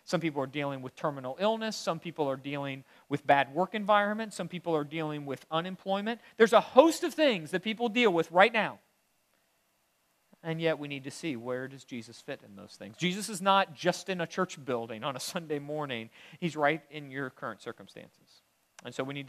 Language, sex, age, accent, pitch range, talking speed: English, male, 40-59, American, 120-180 Hz, 210 wpm